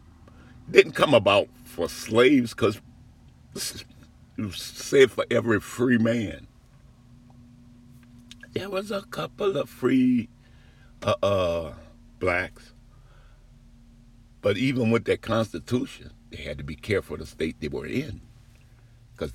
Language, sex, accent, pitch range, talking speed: English, male, American, 100-120 Hz, 120 wpm